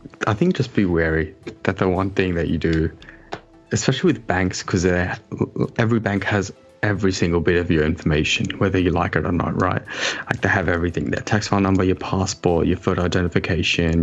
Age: 20-39